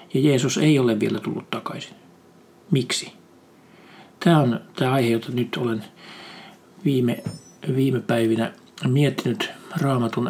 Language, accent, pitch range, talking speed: Finnish, native, 120-150 Hz, 115 wpm